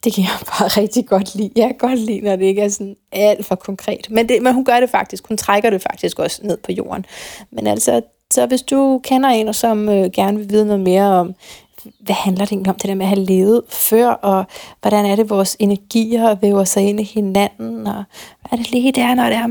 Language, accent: Danish, native